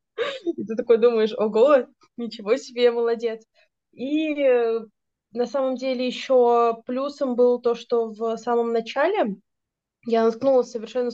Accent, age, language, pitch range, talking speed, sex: native, 20-39, Russian, 200-245 Hz, 125 wpm, female